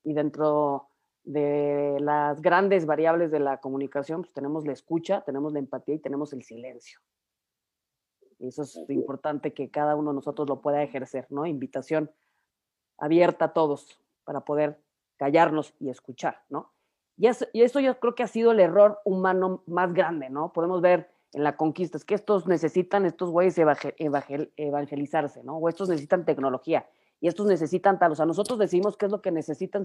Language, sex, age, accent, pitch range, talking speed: Spanish, female, 30-49, Mexican, 145-185 Hz, 180 wpm